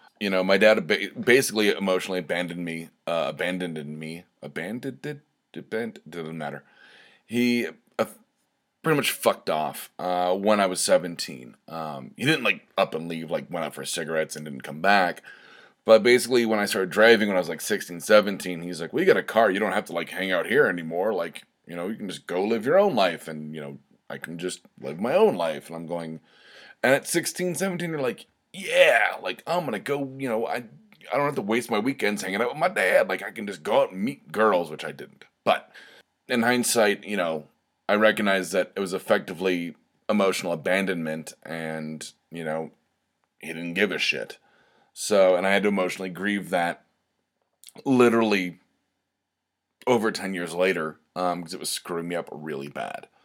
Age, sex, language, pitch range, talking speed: 30-49, male, English, 85-115 Hz, 195 wpm